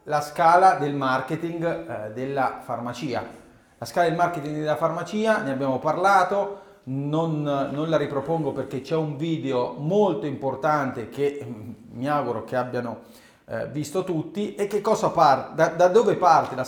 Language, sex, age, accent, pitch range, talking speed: Italian, male, 40-59, native, 140-180 Hz, 160 wpm